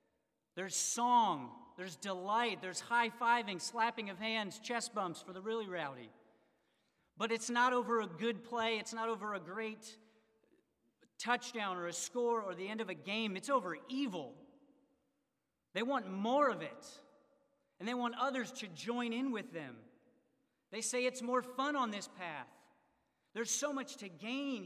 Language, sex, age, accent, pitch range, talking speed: English, male, 40-59, American, 180-235 Hz, 165 wpm